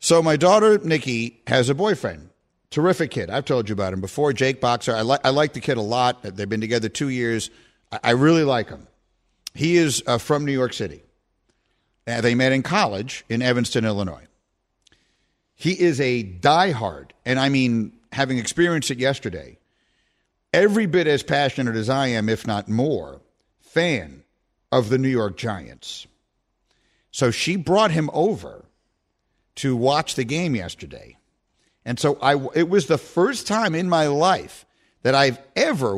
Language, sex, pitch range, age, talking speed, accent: English, male, 115-160 Hz, 50-69, 170 wpm, American